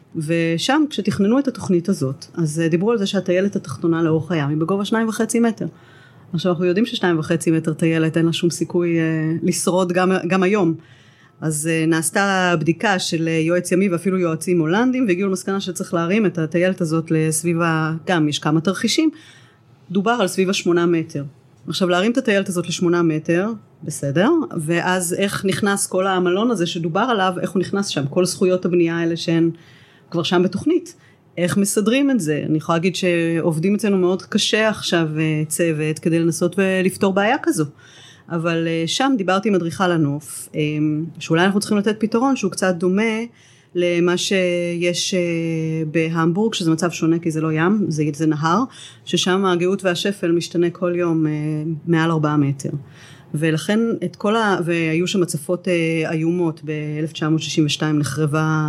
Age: 30-49